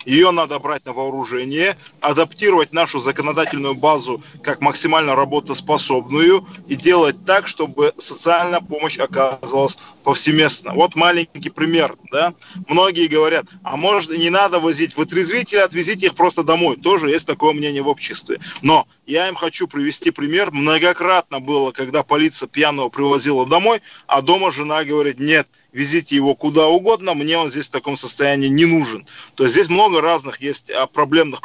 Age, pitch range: 20-39, 145-175 Hz